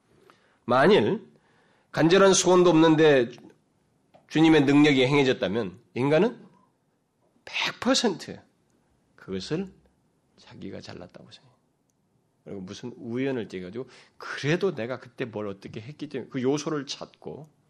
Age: 30-49